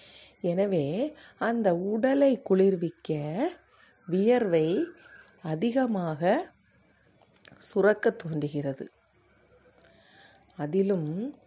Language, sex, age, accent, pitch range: Tamil, female, 30-49, native, 170-230 Hz